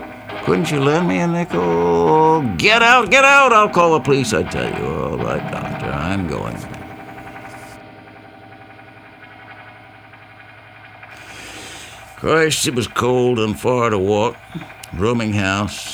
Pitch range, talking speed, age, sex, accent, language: 95-120 Hz, 120 wpm, 60-79, male, American, Italian